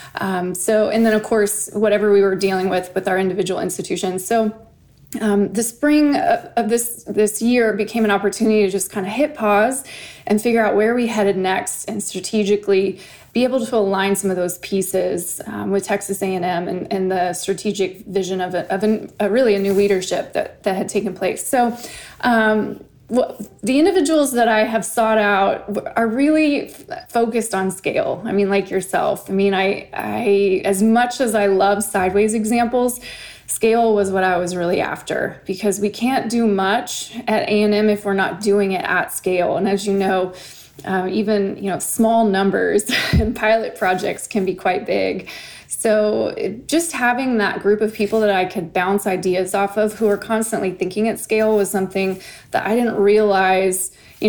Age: 20-39